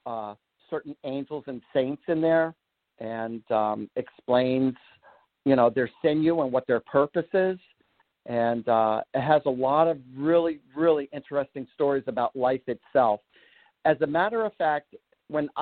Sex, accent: male, American